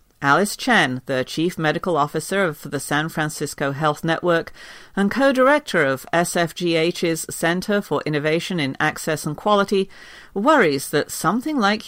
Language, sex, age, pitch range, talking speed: English, female, 50-69, 150-220 Hz, 135 wpm